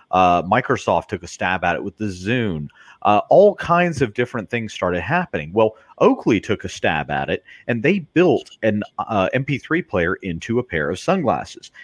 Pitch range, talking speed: 95-145 Hz, 190 wpm